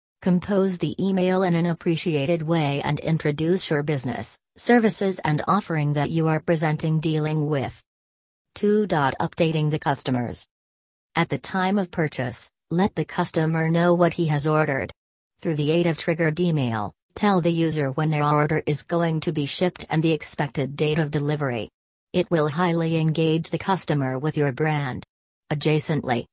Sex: female